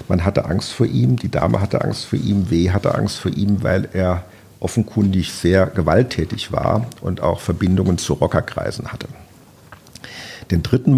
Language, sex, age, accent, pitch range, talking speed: German, male, 50-69, German, 90-115 Hz, 165 wpm